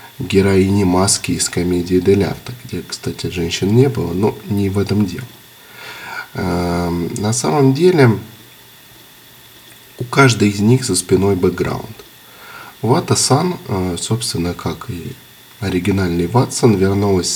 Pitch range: 95-125 Hz